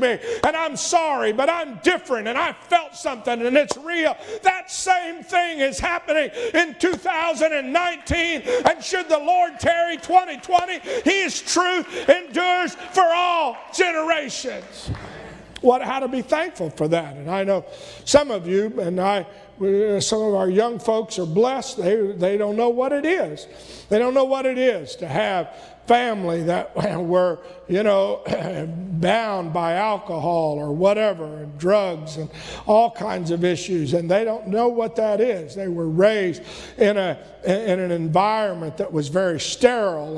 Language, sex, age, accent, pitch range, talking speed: English, male, 50-69, American, 185-290 Hz, 160 wpm